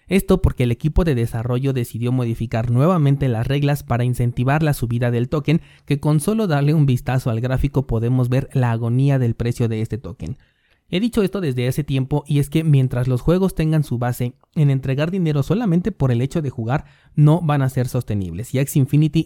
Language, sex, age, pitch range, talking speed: Spanish, male, 30-49, 125-150 Hz, 205 wpm